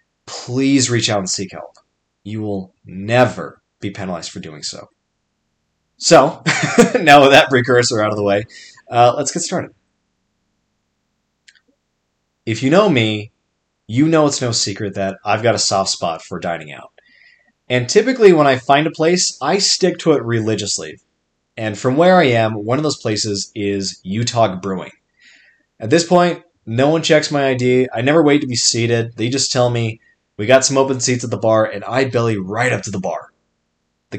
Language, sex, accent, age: English, male, American, 20-39